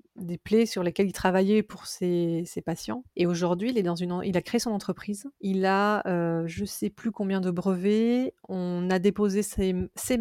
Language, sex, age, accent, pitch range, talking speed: French, female, 30-49, French, 180-215 Hz, 210 wpm